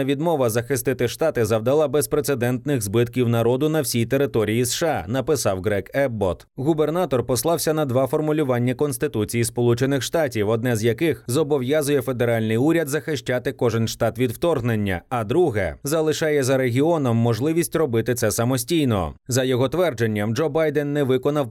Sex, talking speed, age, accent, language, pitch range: male, 135 wpm, 30-49, native, Ukrainian, 115-150 Hz